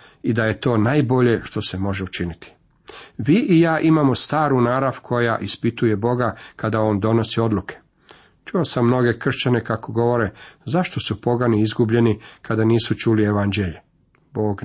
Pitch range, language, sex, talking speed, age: 105-130 Hz, Croatian, male, 150 wpm, 40-59